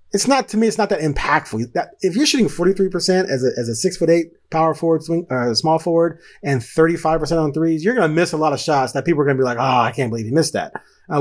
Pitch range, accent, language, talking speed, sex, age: 130-175 Hz, American, English, 285 wpm, male, 30-49